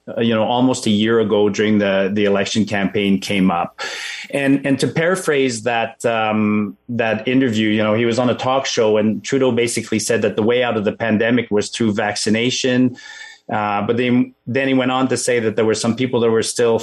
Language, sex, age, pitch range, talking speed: English, male, 30-49, 105-130 Hz, 215 wpm